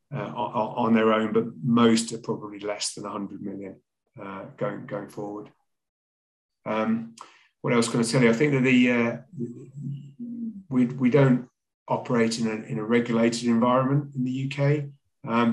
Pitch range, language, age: 110-120 Hz, English, 30-49